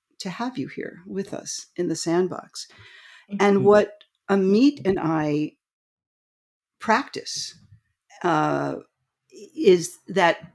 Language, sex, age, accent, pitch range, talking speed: English, female, 50-69, American, 170-235 Hz, 100 wpm